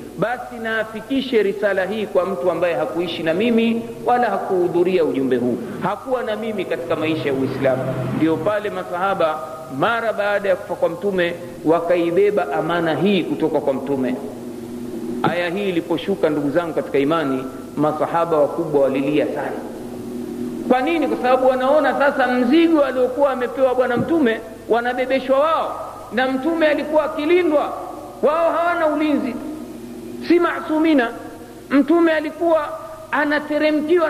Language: Swahili